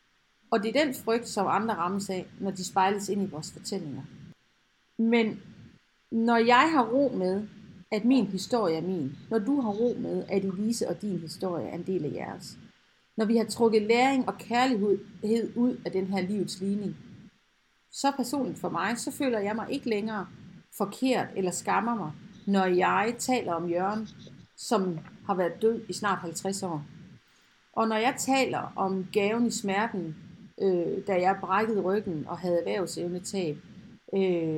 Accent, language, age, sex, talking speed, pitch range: native, Danish, 40-59, female, 170 wpm, 185-225 Hz